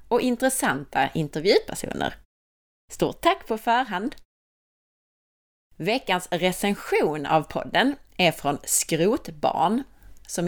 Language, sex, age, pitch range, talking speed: Swedish, female, 30-49, 170-240 Hz, 85 wpm